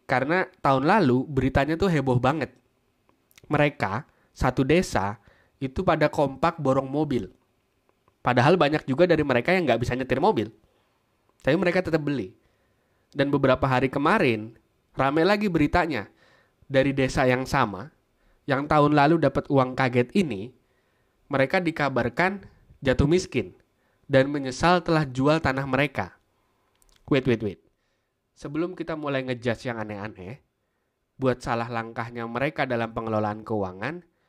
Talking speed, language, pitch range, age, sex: 130 wpm, Indonesian, 120-150 Hz, 20-39, male